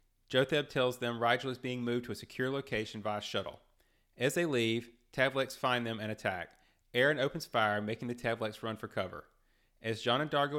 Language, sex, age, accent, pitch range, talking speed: English, male, 30-49, American, 105-130 Hz, 200 wpm